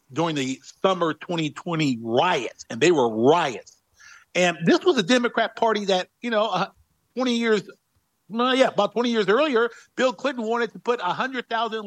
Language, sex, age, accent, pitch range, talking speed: English, male, 50-69, American, 165-225 Hz, 170 wpm